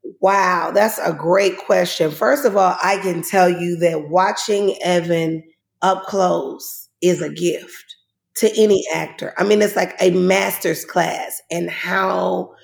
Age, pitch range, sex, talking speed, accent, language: 30-49, 185-240 Hz, female, 150 wpm, American, English